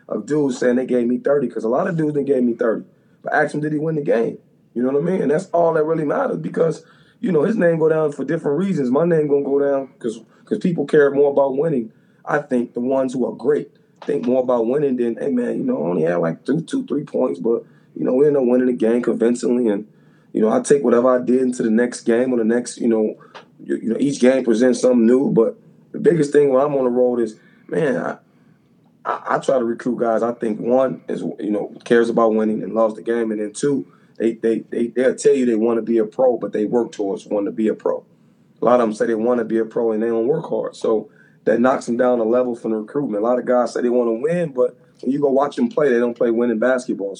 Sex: male